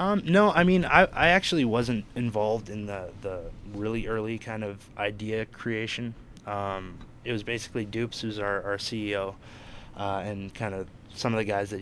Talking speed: 185 wpm